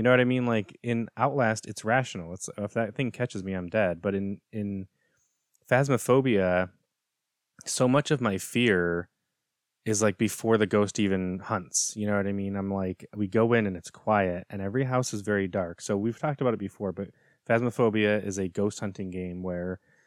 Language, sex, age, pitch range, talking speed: English, male, 20-39, 95-110 Hz, 200 wpm